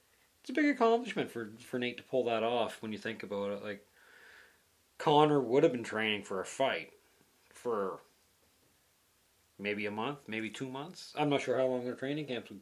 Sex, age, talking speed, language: male, 40-59, 190 wpm, English